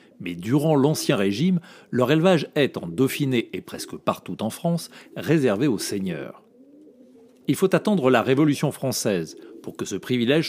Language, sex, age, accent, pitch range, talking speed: French, male, 40-59, French, 125-175 Hz, 155 wpm